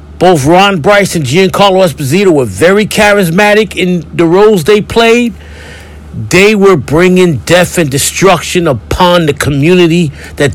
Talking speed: 135 wpm